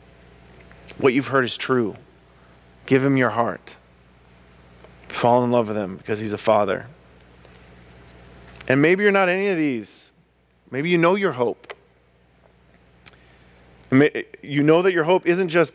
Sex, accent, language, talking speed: male, American, English, 140 wpm